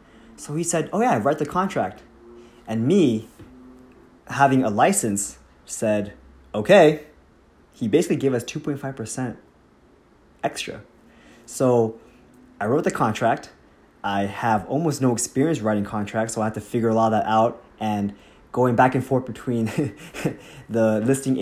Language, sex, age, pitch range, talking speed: English, male, 20-39, 110-140 Hz, 145 wpm